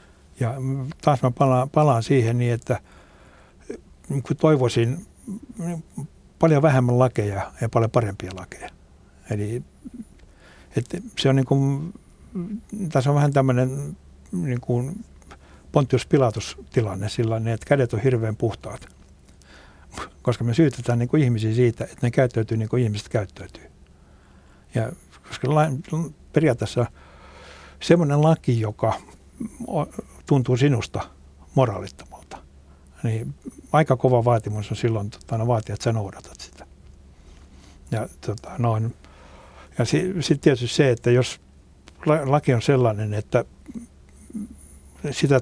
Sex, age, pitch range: male, 60-79, 80-135 Hz